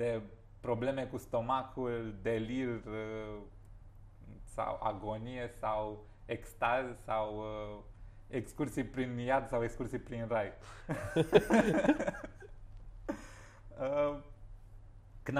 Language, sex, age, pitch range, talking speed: Romanian, male, 30-49, 105-145 Hz, 75 wpm